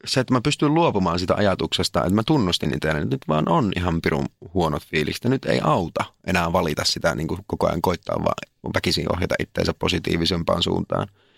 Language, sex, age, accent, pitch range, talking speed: Finnish, male, 30-49, native, 90-130 Hz, 190 wpm